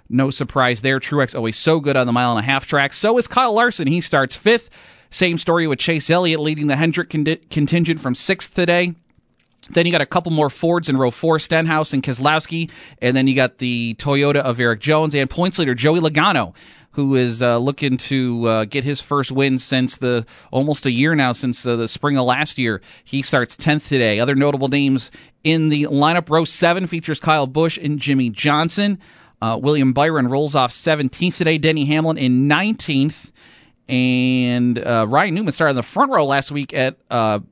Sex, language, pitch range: male, English, 125-155 Hz